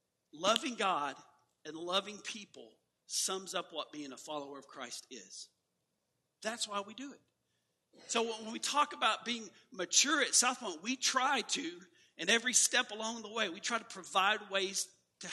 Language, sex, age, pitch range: English, male, 50-69, 165-220 Hz